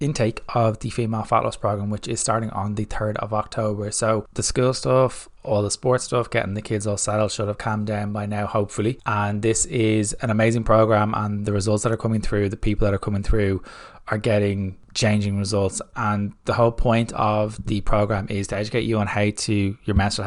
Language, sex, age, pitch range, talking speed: English, male, 20-39, 100-110 Hz, 220 wpm